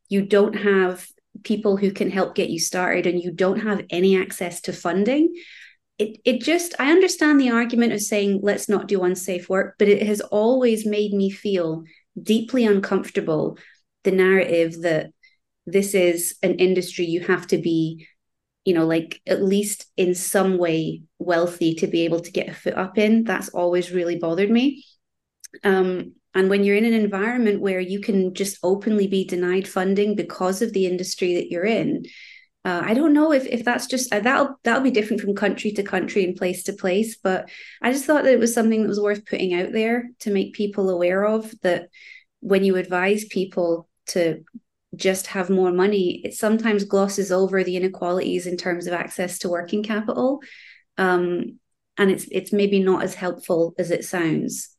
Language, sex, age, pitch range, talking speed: English, female, 30-49, 180-215 Hz, 185 wpm